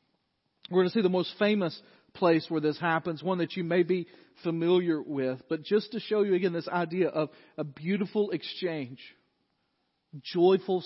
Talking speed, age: 170 wpm, 40-59